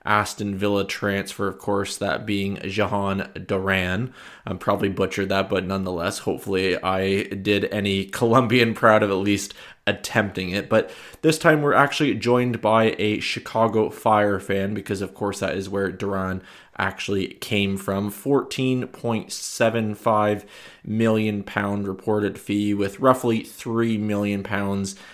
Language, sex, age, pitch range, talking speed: English, male, 20-39, 95-110 Hz, 135 wpm